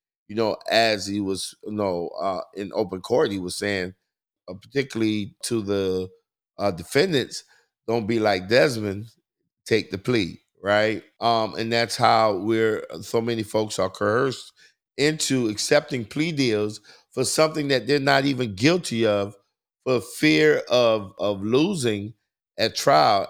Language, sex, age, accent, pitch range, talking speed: English, male, 50-69, American, 95-110 Hz, 145 wpm